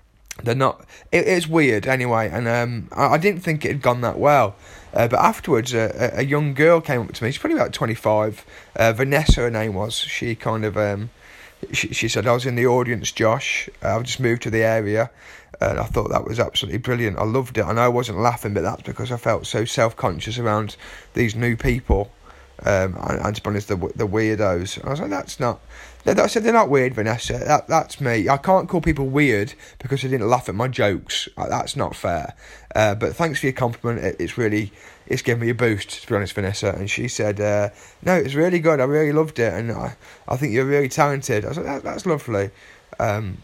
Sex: male